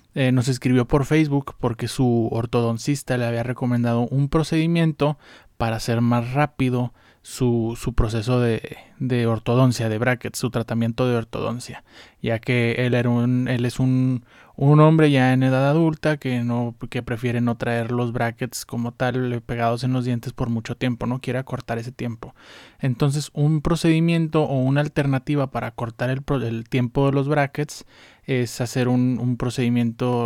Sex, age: male, 20-39